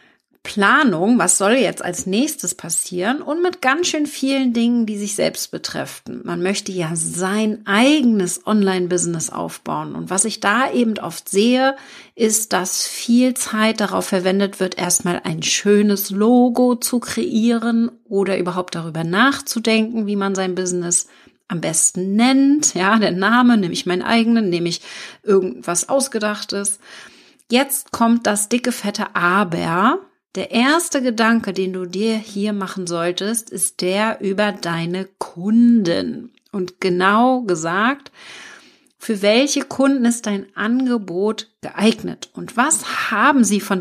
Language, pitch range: German, 185-240 Hz